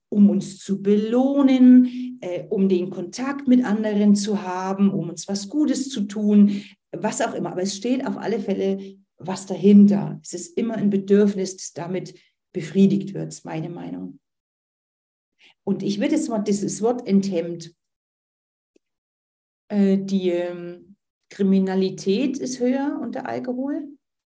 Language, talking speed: German, 140 wpm